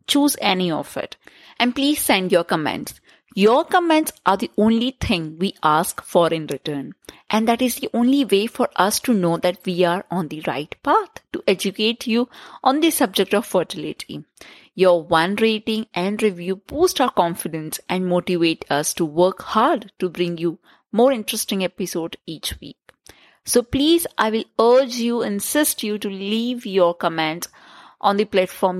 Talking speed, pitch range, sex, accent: 175 wpm, 175-250 Hz, female, Indian